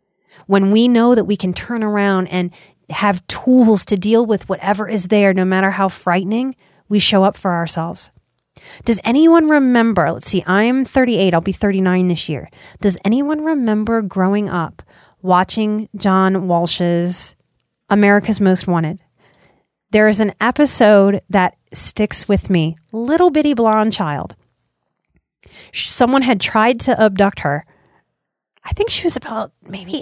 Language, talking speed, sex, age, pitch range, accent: English, 145 wpm, female, 30-49, 195-260 Hz, American